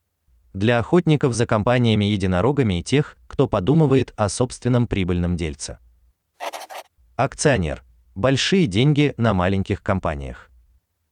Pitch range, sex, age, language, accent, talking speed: 85-130 Hz, male, 30-49, Russian, native, 95 wpm